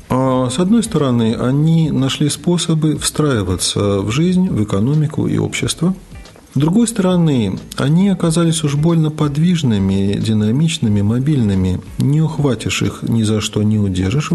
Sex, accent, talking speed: male, native, 130 wpm